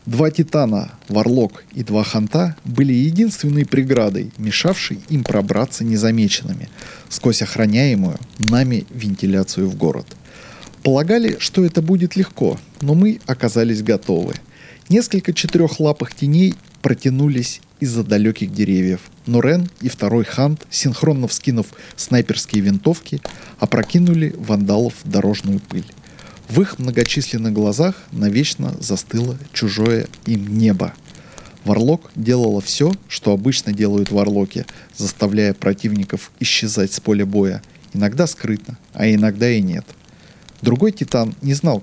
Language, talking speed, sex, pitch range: Russian, 115 wpm, male, 105-155 Hz